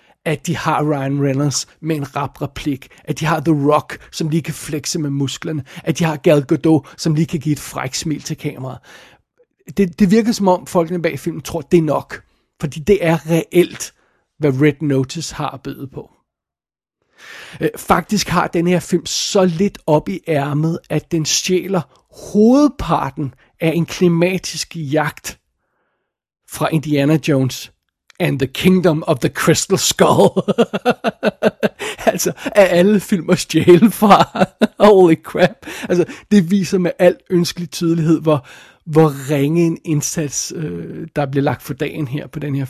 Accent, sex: native, male